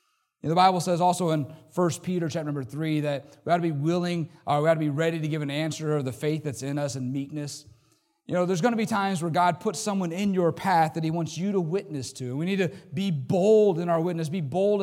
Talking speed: 280 wpm